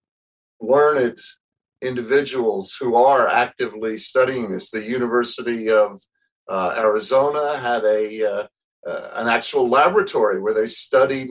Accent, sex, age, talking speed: American, male, 50-69, 115 wpm